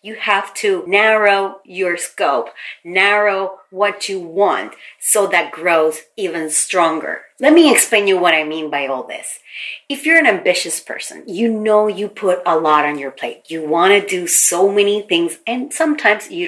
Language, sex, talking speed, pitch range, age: English, female, 180 wpm, 175-250 Hz, 30-49